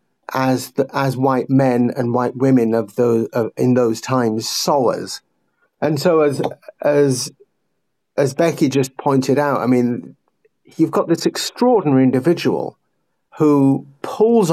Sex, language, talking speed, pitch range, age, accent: male, English, 135 wpm, 130-155 Hz, 50-69, British